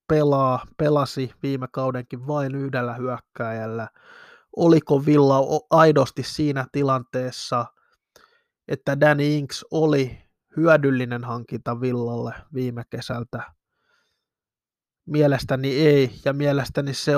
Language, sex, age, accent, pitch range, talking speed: Finnish, male, 20-39, native, 130-150 Hz, 90 wpm